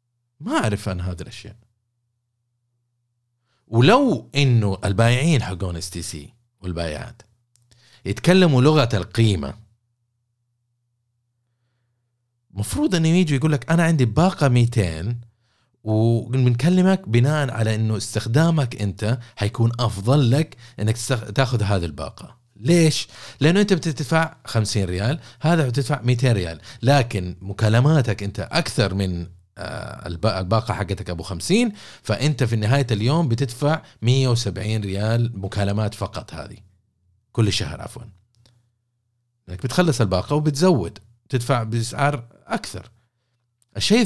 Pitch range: 105-130 Hz